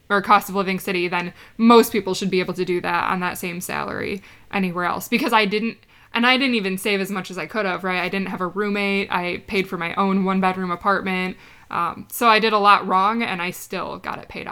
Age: 20-39